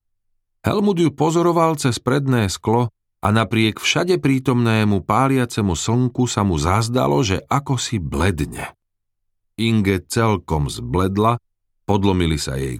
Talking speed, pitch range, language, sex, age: 115 wpm, 95-120 Hz, Slovak, male, 40-59